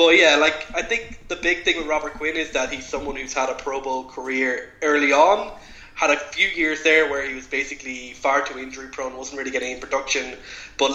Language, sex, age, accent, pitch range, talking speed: English, male, 20-39, Irish, 130-150 Hz, 230 wpm